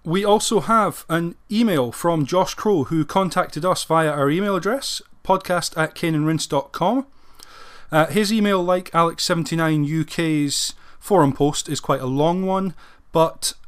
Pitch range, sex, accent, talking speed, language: 130-165 Hz, male, British, 130 wpm, English